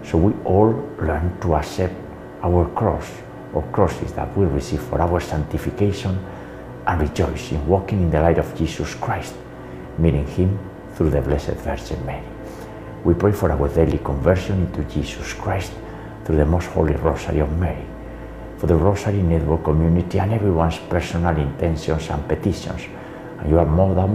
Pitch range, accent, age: 80-100 Hz, Spanish, 60-79